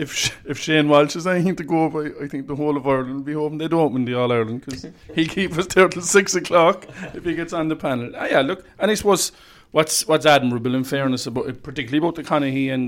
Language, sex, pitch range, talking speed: English, male, 115-135 Hz, 265 wpm